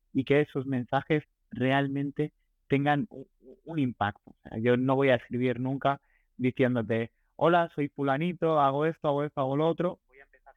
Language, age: Spanish, 30-49